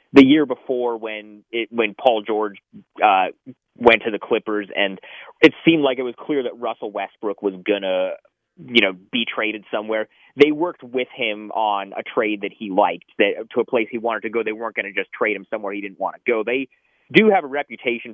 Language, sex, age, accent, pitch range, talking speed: English, male, 30-49, American, 105-135 Hz, 215 wpm